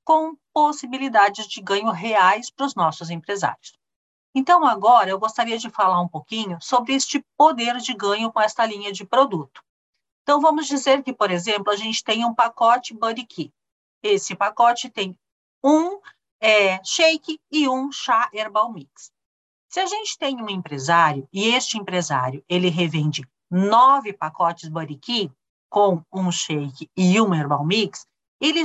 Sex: female